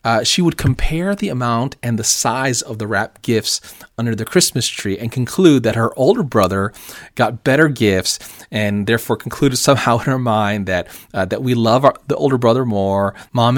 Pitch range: 110-155 Hz